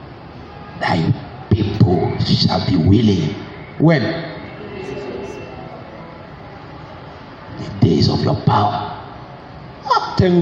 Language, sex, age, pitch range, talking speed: English, male, 50-69, 110-145 Hz, 70 wpm